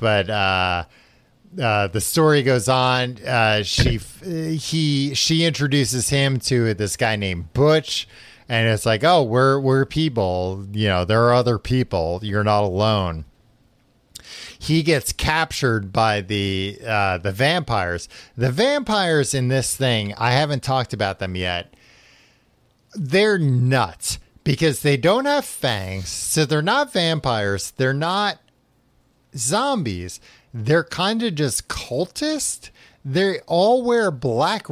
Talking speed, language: 130 wpm, English